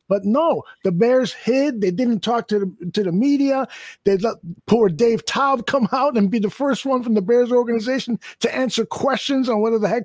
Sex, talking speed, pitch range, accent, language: male, 210 wpm, 215-270 Hz, American, English